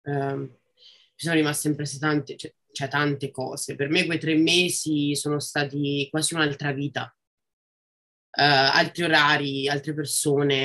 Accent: native